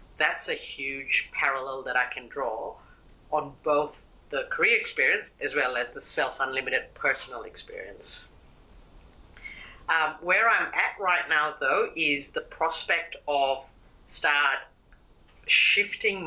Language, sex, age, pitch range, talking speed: English, female, 40-59, 140-180 Hz, 120 wpm